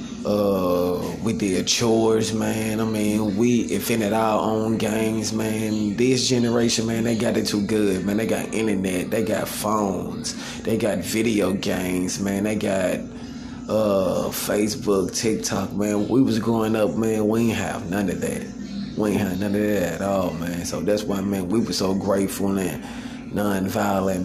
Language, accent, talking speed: English, American, 175 wpm